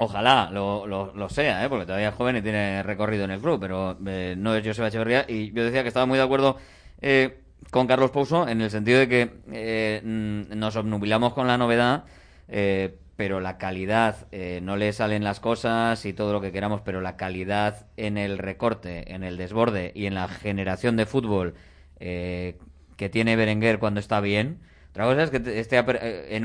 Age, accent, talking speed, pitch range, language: 20-39, Spanish, 200 wpm, 95-125 Hz, Spanish